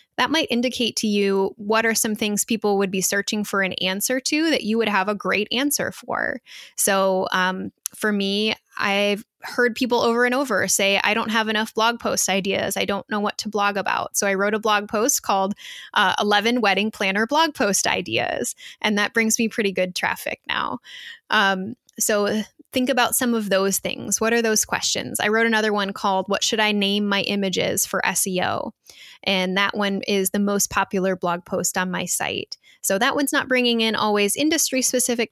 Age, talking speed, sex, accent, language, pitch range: 10-29, 200 wpm, female, American, English, 195-230 Hz